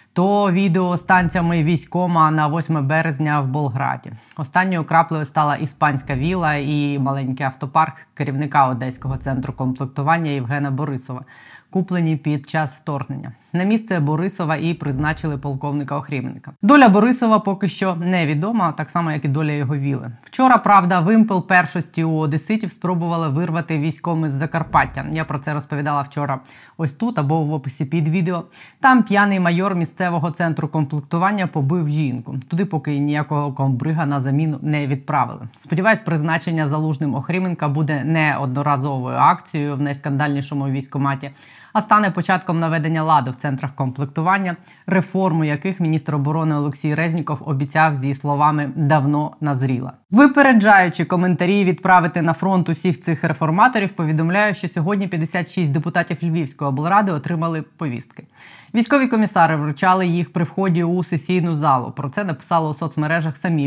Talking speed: 140 wpm